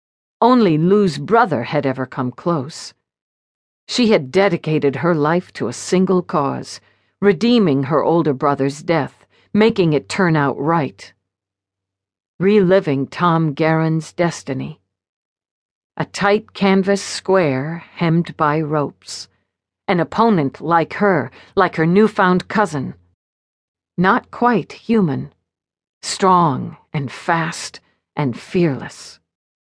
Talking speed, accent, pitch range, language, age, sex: 105 wpm, American, 135-200 Hz, English, 50-69, female